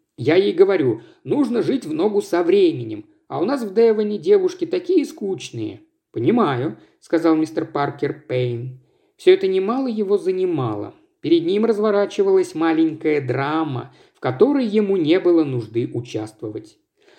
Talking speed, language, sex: 135 wpm, Russian, male